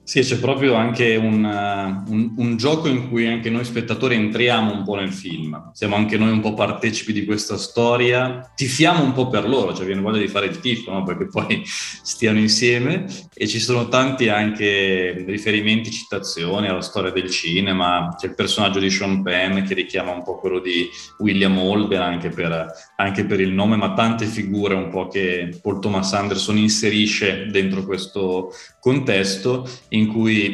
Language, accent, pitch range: Italian, native, 95-115 Hz